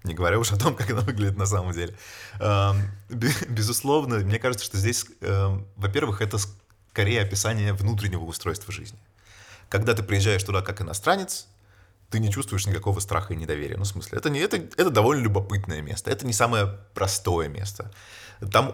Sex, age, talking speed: male, 20-39, 165 wpm